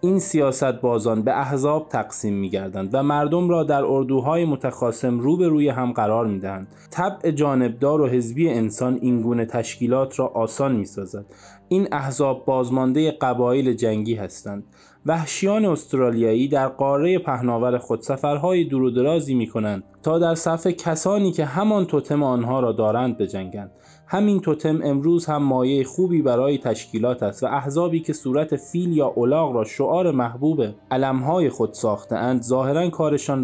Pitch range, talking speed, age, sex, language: 115-160 Hz, 145 wpm, 20-39, male, Persian